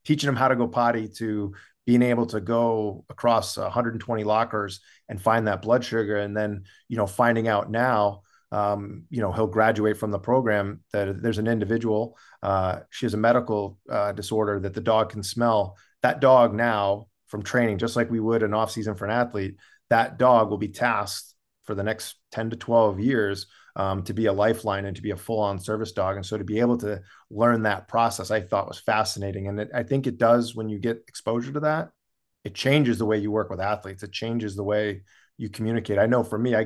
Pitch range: 105-120 Hz